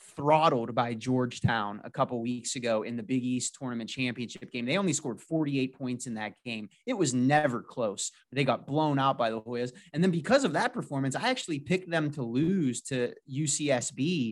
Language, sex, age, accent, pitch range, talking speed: English, male, 30-49, American, 125-155 Hz, 200 wpm